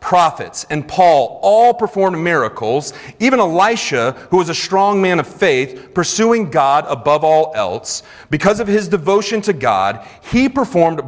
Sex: male